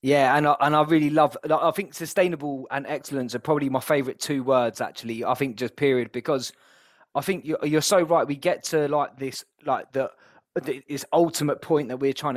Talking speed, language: 210 wpm, English